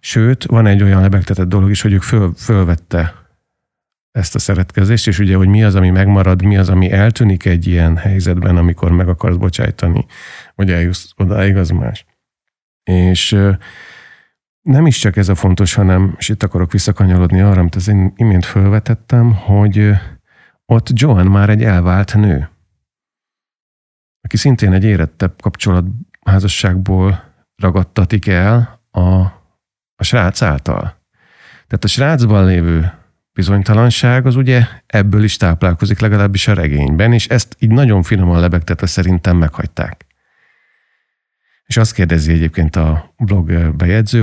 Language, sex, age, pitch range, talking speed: Hungarian, male, 50-69, 90-110 Hz, 135 wpm